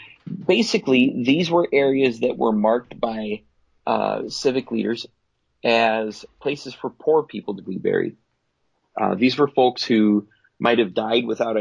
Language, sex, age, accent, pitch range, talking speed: English, male, 30-49, American, 105-135 Hz, 145 wpm